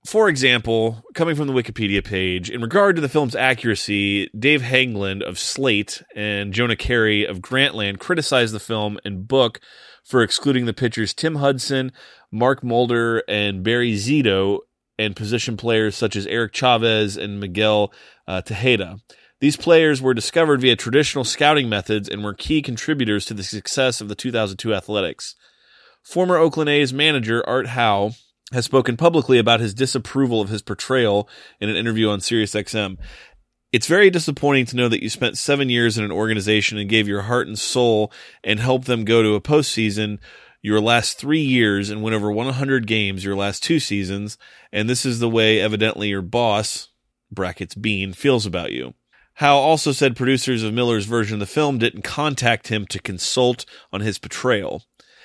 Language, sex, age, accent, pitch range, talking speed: English, male, 30-49, American, 105-130 Hz, 170 wpm